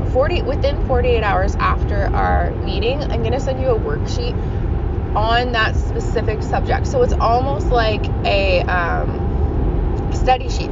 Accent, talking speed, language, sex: American, 145 wpm, English, female